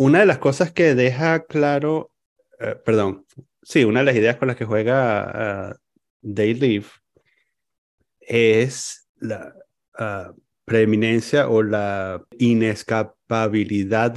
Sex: male